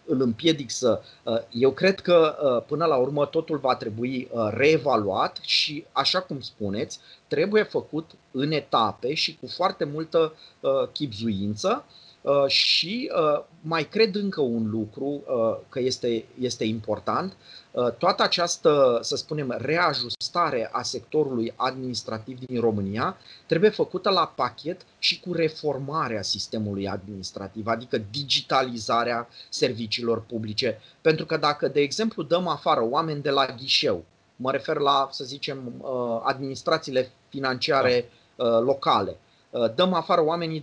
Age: 30-49